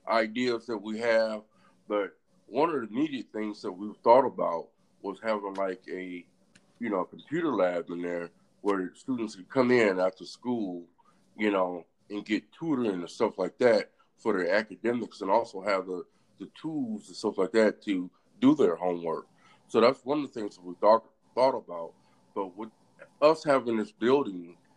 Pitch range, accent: 100-135 Hz, American